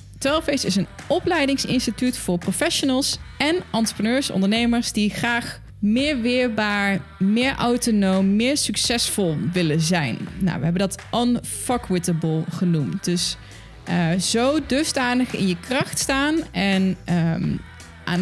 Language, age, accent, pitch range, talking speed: Dutch, 20-39, Dutch, 180-250 Hz, 115 wpm